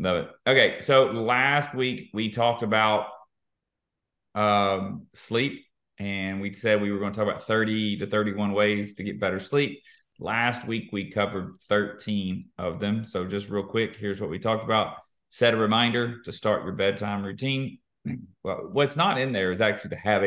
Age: 30-49